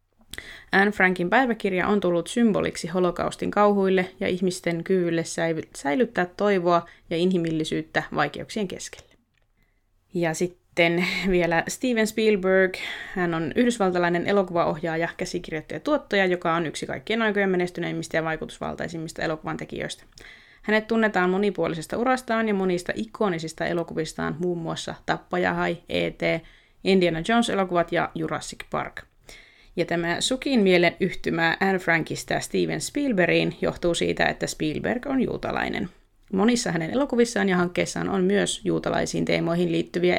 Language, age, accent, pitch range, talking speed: Finnish, 20-39, native, 165-200 Hz, 120 wpm